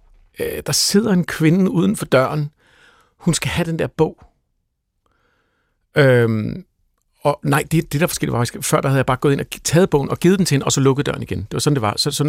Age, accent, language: 60-79, native, Danish